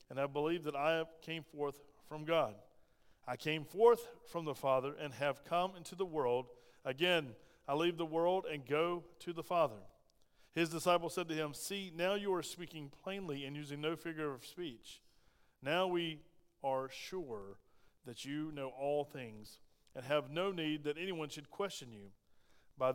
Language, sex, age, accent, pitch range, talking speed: English, male, 40-59, American, 130-165 Hz, 175 wpm